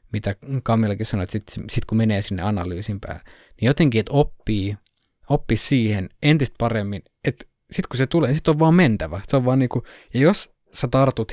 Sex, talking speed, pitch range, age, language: male, 200 wpm, 105-130 Hz, 20-39, Finnish